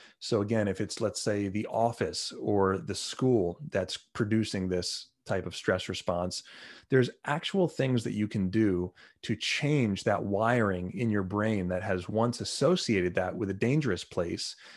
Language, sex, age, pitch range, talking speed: English, male, 30-49, 95-125 Hz, 165 wpm